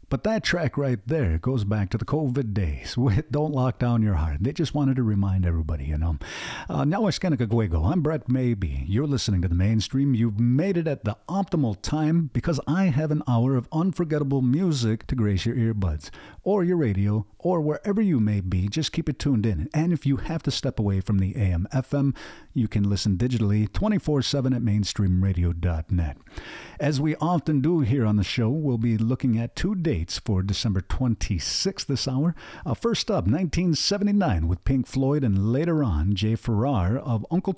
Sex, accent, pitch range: male, American, 105-150 Hz